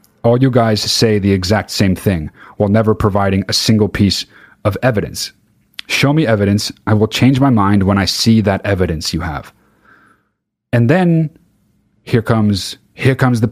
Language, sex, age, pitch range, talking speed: English, male, 30-49, 95-120 Hz, 170 wpm